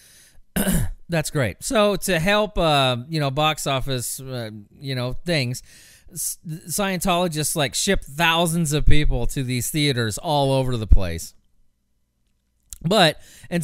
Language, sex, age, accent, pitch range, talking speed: English, male, 30-49, American, 105-165 Hz, 130 wpm